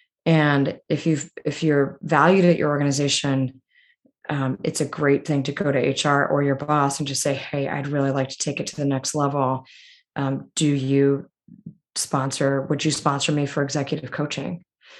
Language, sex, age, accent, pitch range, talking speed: English, female, 20-39, American, 130-150 Hz, 185 wpm